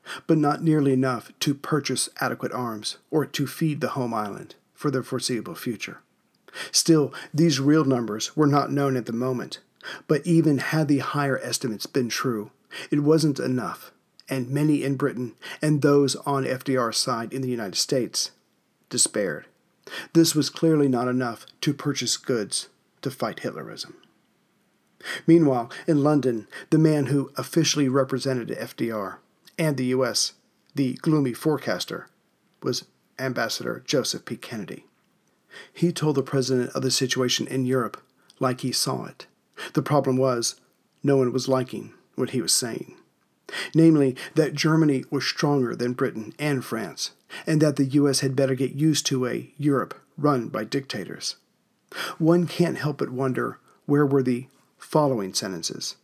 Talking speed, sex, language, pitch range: 150 wpm, male, English, 130-150 Hz